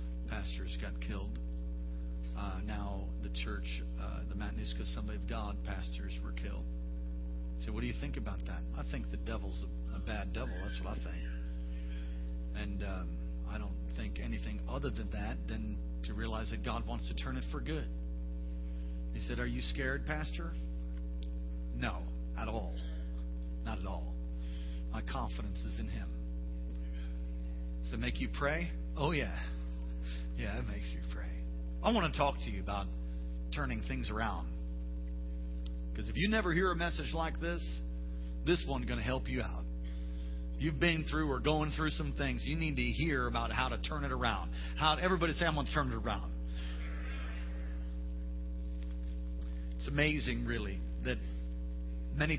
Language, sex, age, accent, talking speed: English, male, 40-59, American, 165 wpm